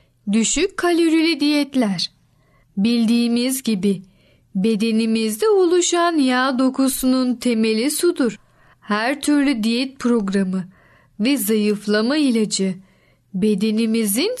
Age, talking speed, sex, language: 40-59, 80 wpm, female, Turkish